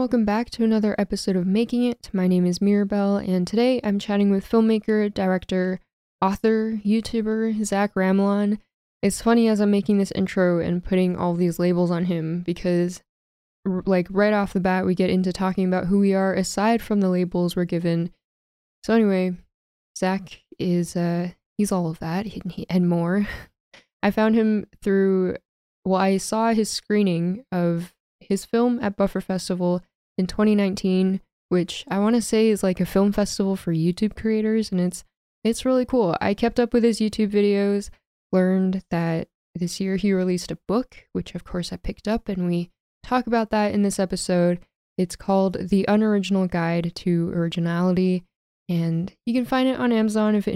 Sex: female